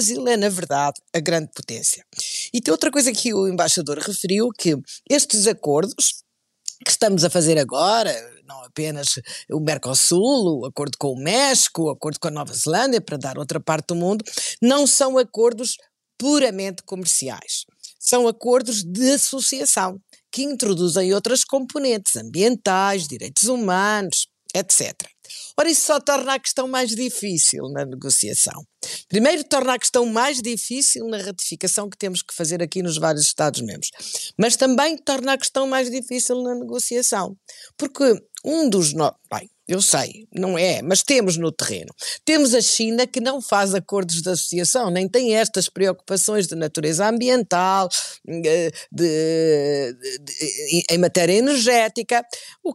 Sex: female